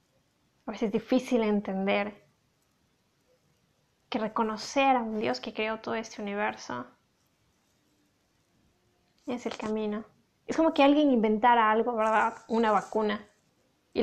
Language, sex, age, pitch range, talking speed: Spanish, female, 20-39, 230-275 Hz, 120 wpm